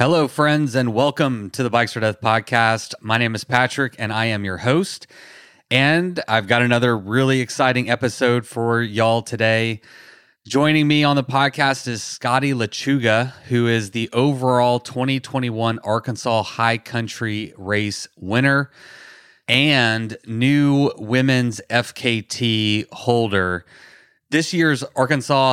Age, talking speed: 30-49, 130 wpm